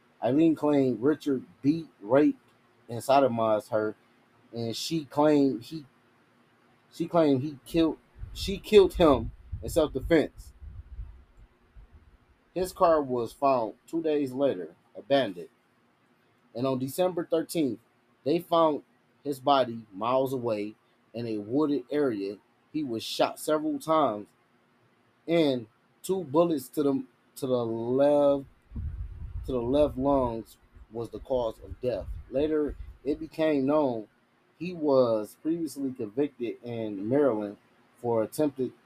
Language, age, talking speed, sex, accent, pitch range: English, 30-49, 125 wpm, male, American, 115-150 Hz